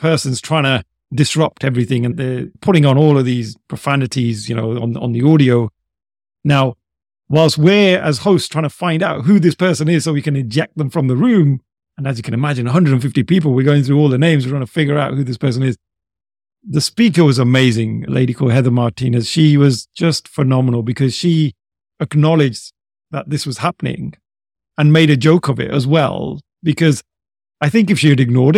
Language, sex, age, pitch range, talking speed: English, male, 40-59, 125-160 Hz, 205 wpm